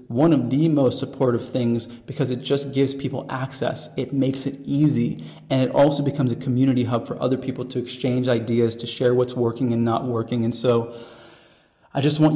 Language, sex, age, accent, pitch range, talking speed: English, male, 30-49, American, 115-135 Hz, 200 wpm